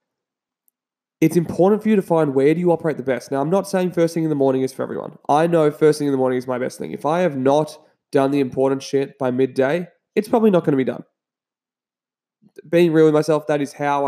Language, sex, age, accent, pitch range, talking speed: English, male, 20-39, Australian, 135-170 Hz, 250 wpm